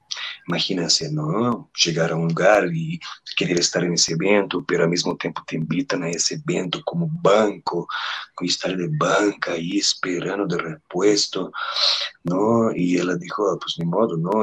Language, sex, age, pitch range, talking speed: Portuguese, male, 40-59, 85-95 Hz, 160 wpm